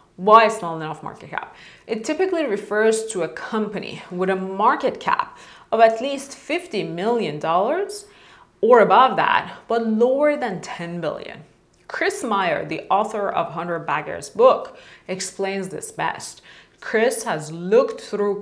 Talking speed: 140 wpm